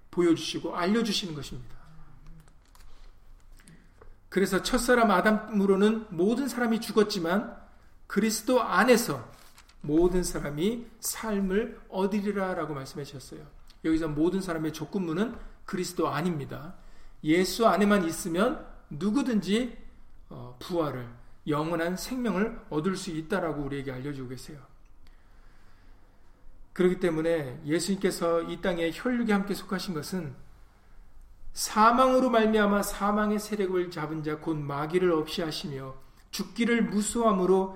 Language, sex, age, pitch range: Korean, male, 40-59, 155-210 Hz